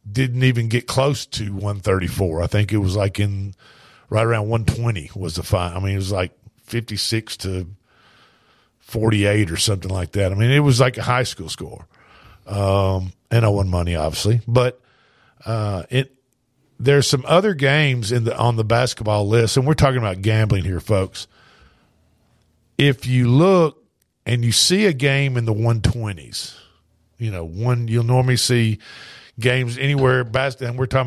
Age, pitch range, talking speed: 50-69, 105-135 Hz, 170 wpm